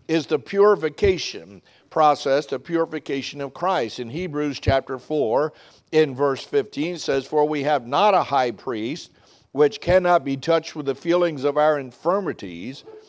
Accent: American